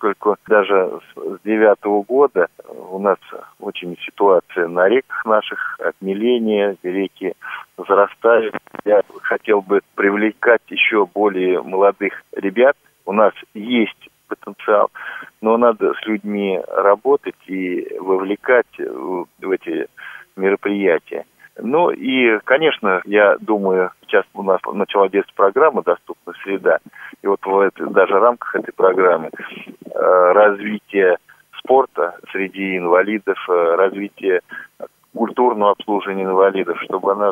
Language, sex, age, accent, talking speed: Russian, male, 40-59, native, 110 wpm